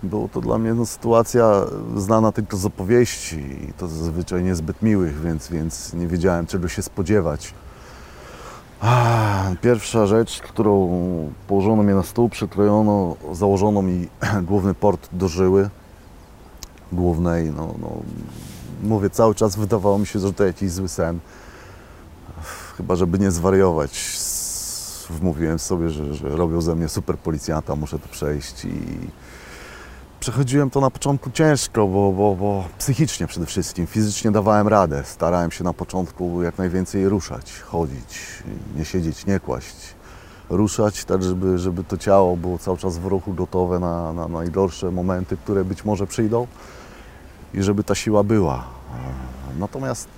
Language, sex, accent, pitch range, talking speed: Polish, male, native, 85-105 Hz, 140 wpm